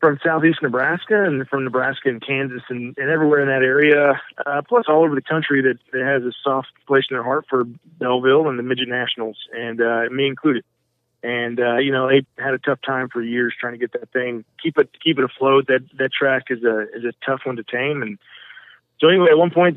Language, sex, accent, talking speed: English, male, American, 235 wpm